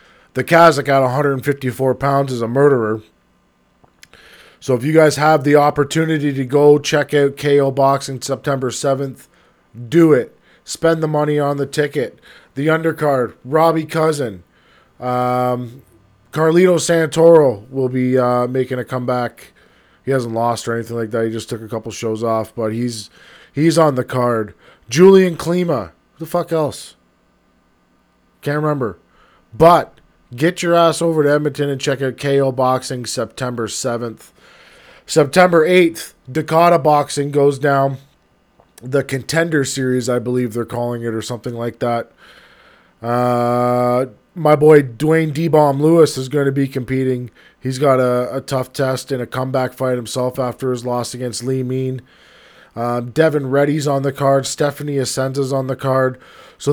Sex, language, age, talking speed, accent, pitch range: male, English, 20-39, 150 wpm, American, 125-150 Hz